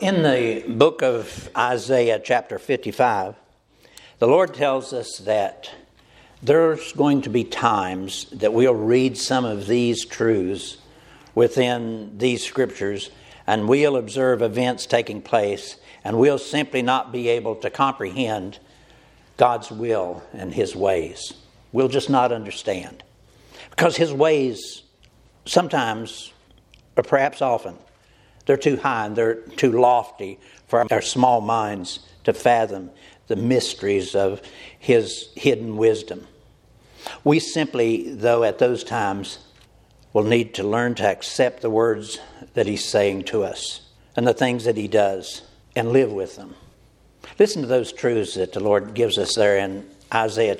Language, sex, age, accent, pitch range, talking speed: English, male, 60-79, American, 105-130 Hz, 140 wpm